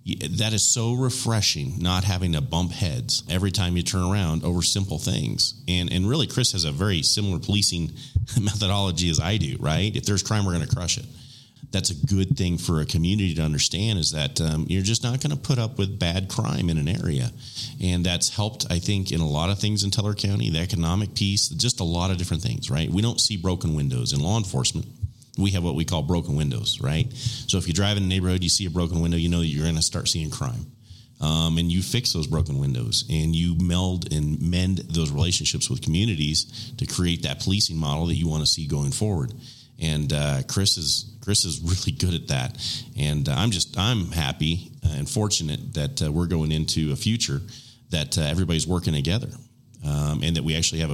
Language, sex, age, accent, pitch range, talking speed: English, male, 40-59, American, 80-110 Hz, 220 wpm